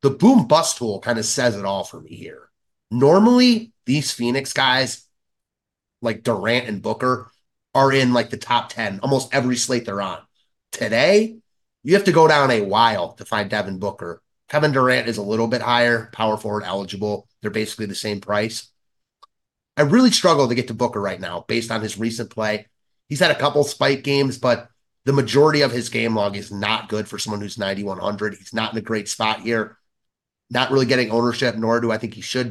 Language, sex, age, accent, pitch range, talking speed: English, male, 30-49, American, 110-140 Hz, 200 wpm